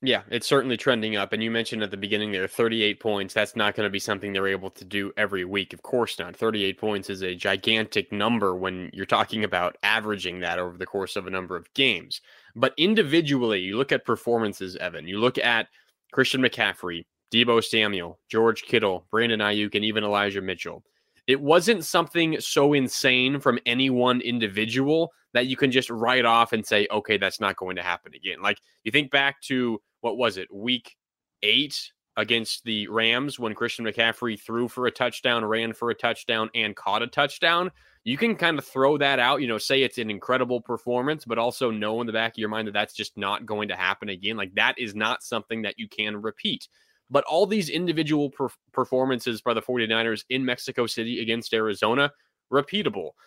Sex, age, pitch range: male, 20-39, 105-140 Hz